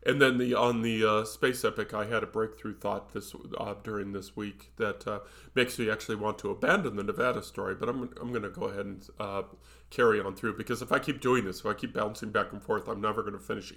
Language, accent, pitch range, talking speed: English, American, 100-120 Hz, 255 wpm